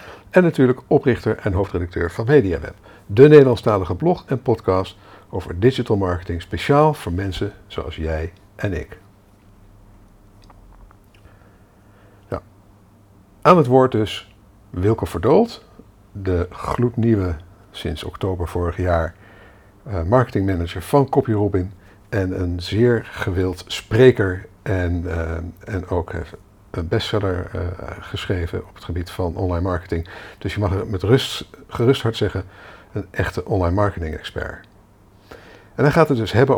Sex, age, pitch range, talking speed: male, 60-79, 95-115 Hz, 130 wpm